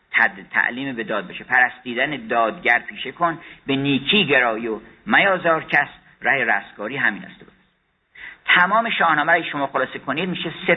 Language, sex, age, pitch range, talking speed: Persian, male, 50-69, 140-180 Hz, 155 wpm